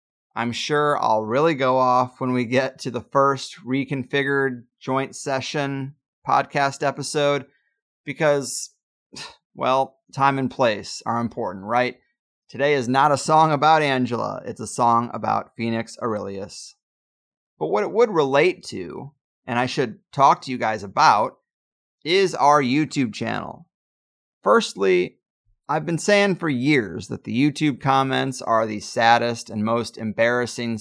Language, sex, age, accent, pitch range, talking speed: English, male, 30-49, American, 120-150 Hz, 140 wpm